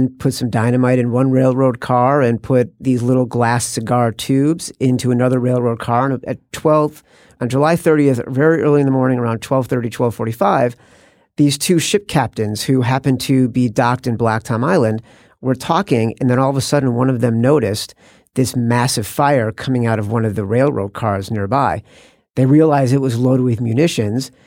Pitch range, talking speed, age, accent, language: 120-140 Hz, 185 wpm, 50-69, American, English